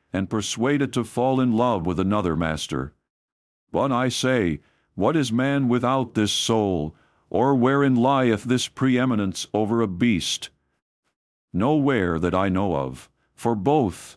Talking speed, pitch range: 140 wpm, 90-130 Hz